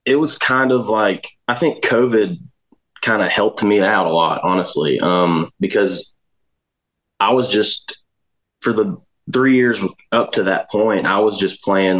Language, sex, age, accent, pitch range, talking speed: English, male, 20-39, American, 90-115 Hz, 165 wpm